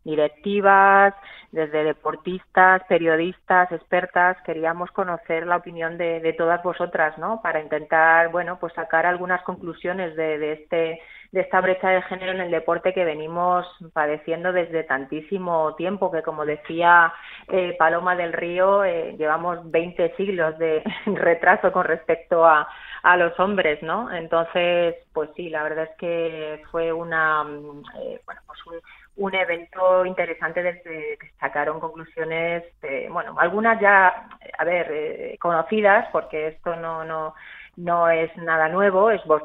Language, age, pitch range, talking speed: Spanish, 30-49, 160-185 Hz, 145 wpm